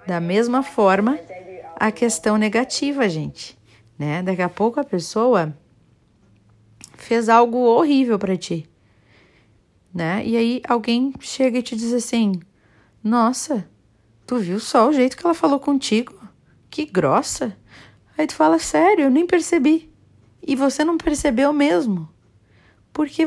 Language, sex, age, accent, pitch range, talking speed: Portuguese, female, 40-59, Brazilian, 155-240 Hz, 135 wpm